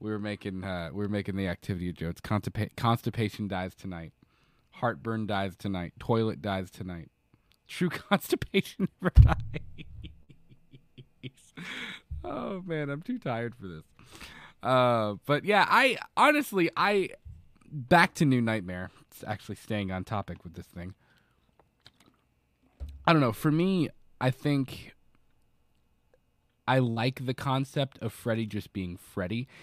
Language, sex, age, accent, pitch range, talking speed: English, male, 20-39, American, 95-140 Hz, 130 wpm